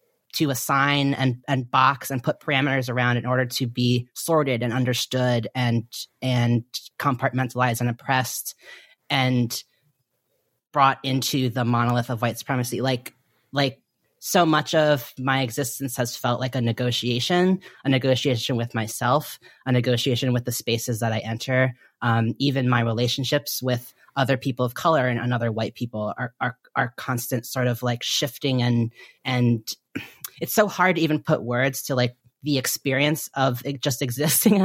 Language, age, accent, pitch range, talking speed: English, 30-49, American, 125-150 Hz, 155 wpm